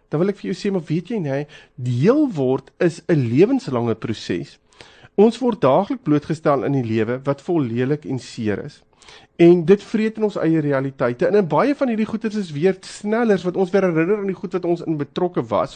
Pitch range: 130-180 Hz